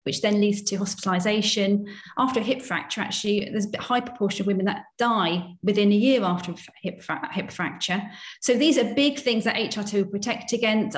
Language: English